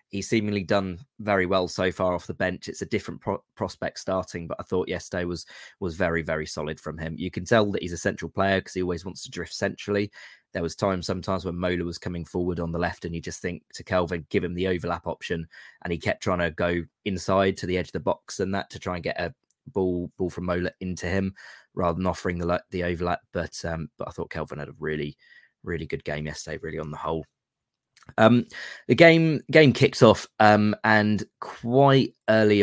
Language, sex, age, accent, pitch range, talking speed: English, male, 20-39, British, 85-100 Hz, 230 wpm